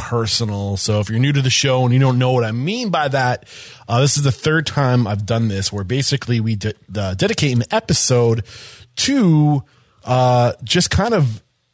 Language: English